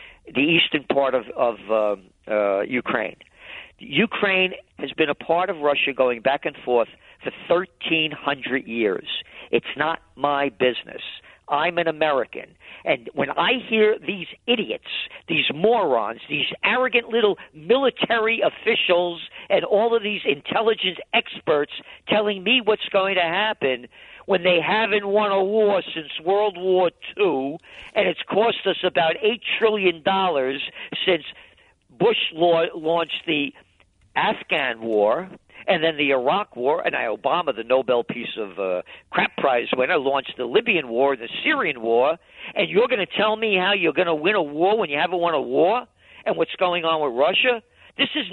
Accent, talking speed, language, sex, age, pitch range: American, 155 wpm, English, male, 50-69, 145-215 Hz